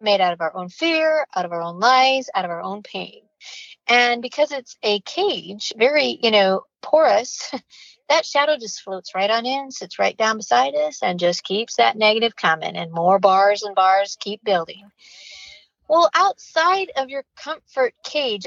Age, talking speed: 40-59, 180 wpm